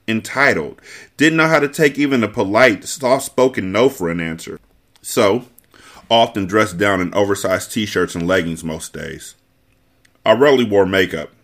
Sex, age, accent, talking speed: male, 30-49, American, 150 wpm